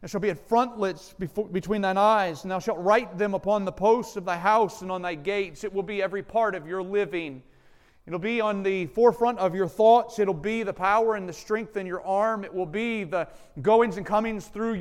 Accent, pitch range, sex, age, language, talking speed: American, 190-225 Hz, male, 40-59, English, 245 wpm